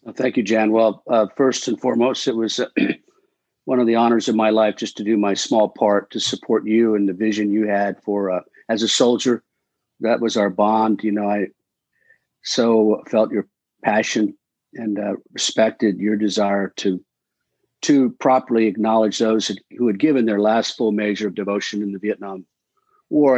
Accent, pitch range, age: American, 105-120 Hz, 50-69